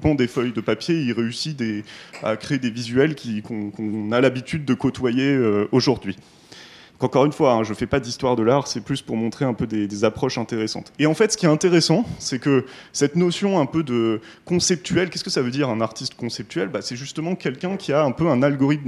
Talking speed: 220 wpm